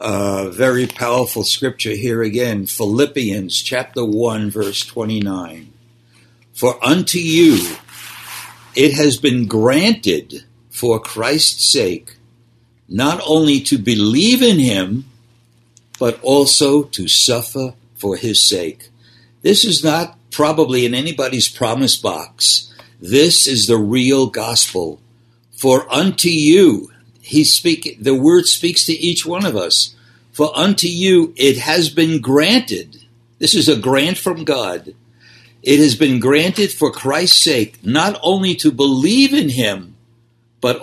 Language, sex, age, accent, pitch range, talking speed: English, male, 60-79, American, 115-150 Hz, 130 wpm